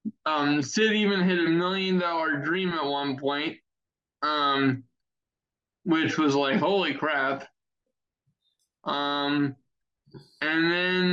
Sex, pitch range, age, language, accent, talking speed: male, 140-175 Hz, 20-39, English, American, 110 wpm